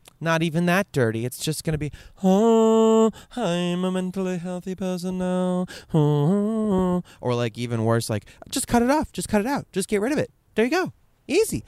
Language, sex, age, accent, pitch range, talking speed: English, male, 20-39, American, 110-170 Hz, 195 wpm